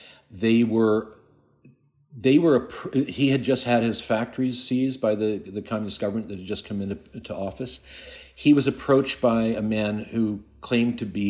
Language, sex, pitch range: English, male, 90-110 Hz